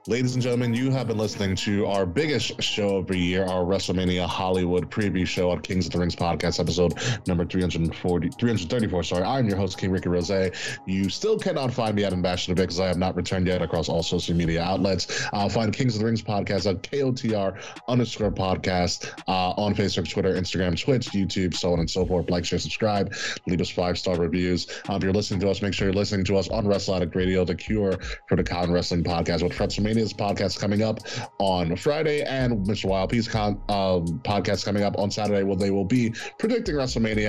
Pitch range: 90-110 Hz